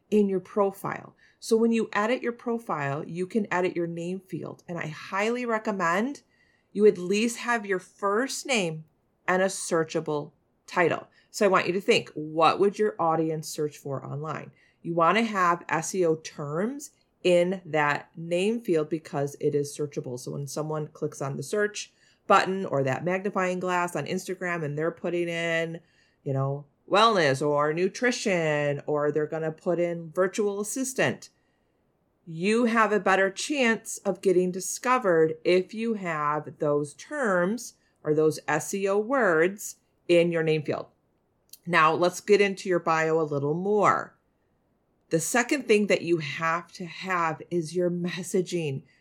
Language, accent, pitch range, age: English, American, 155-200 Hz, 30-49